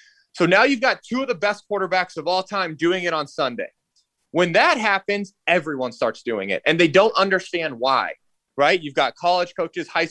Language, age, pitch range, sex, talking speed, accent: English, 20-39, 160-205 Hz, male, 200 wpm, American